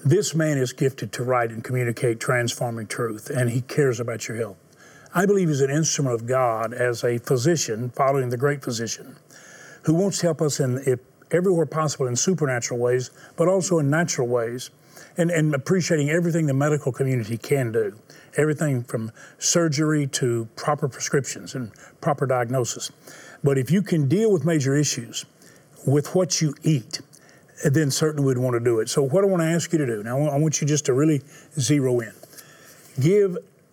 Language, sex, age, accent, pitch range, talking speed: English, male, 40-59, American, 125-160 Hz, 180 wpm